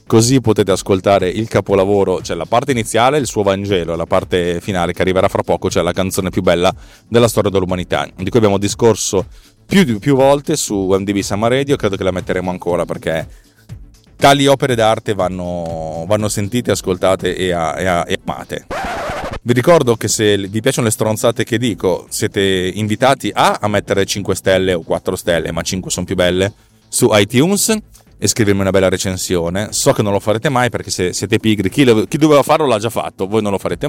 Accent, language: native, Italian